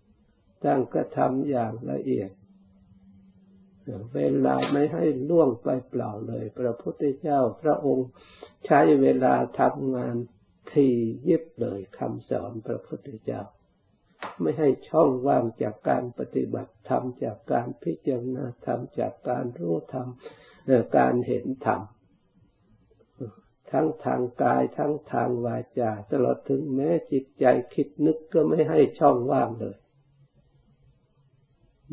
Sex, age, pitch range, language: male, 60-79, 100-135 Hz, Thai